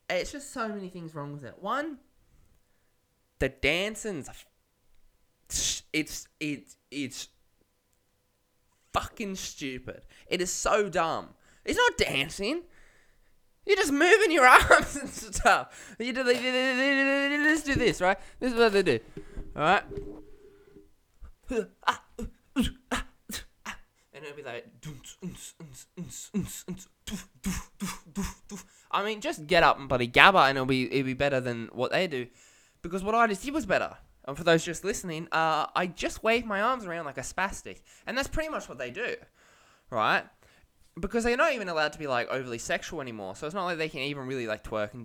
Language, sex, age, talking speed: English, male, 20-39, 155 wpm